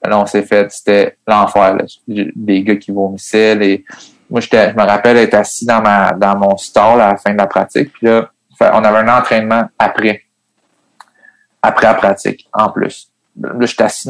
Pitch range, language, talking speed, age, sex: 105-135 Hz, French, 190 wpm, 30-49, male